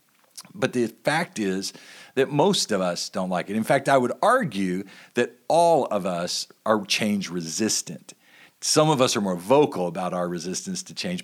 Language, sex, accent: English, male, American